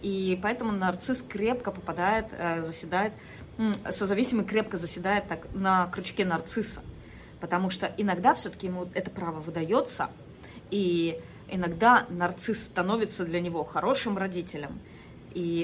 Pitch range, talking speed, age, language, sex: 170-225 Hz, 110 wpm, 30-49, Russian, female